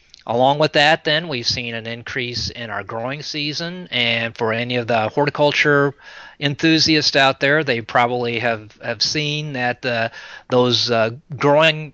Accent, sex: American, male